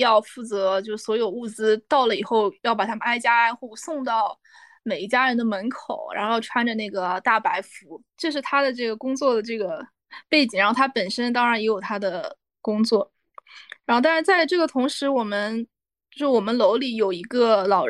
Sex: female